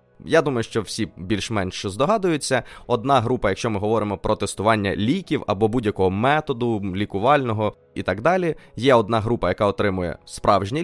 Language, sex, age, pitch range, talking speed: Ukrainian, male, 20-39, 105-140 Hz, 150 wpm